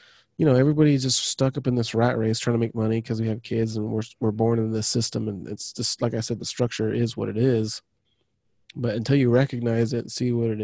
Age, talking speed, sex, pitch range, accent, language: 20-39, 260 wpm, male, 110-130 Hz, American, English